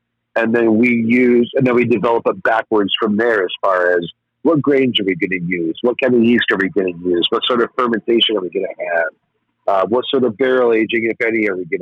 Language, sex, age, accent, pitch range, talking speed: English, male, 50-69, American, 105-120 Hz, 255 wpm